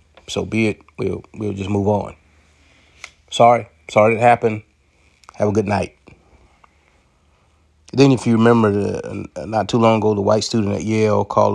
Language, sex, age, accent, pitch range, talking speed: English, male, 30-49, American, 95-110 Hz, 155 wpm